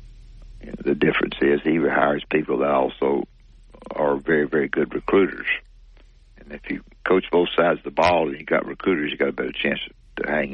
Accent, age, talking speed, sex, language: American, 60-79, 190 wpm, male, English